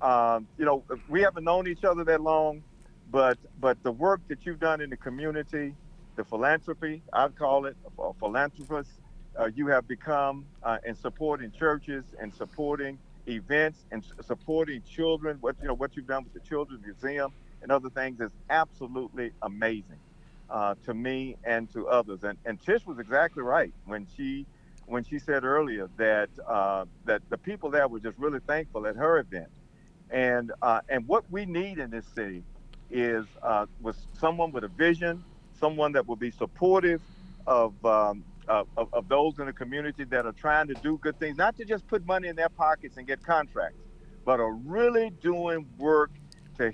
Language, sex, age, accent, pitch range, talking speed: English, male, 50-69, American, 120-155 Hz, 180 wpm